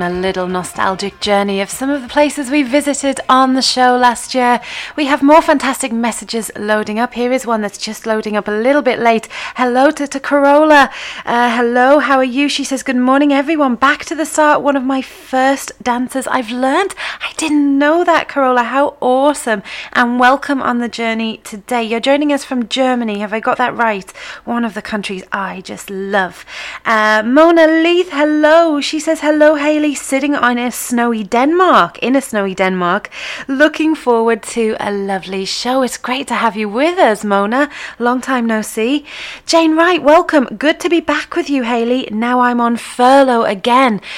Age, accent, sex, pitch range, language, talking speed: 30-49, British, female, 220-285 Hz, English, 190 wpm